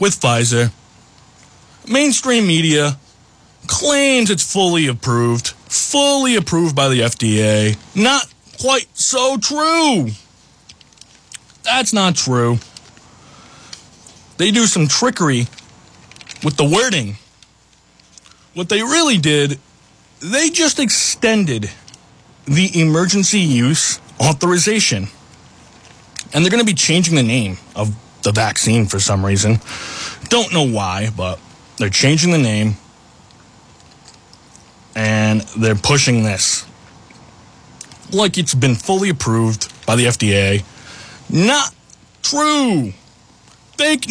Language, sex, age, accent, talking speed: English, male, 20-39, American, 100 wpm